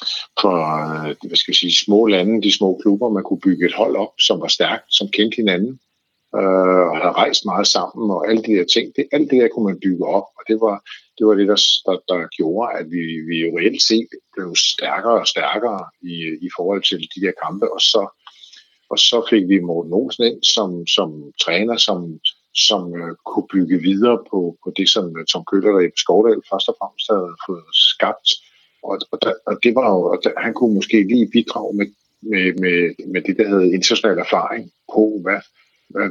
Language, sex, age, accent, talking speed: Danish, male, 50-69, native, 195 wpm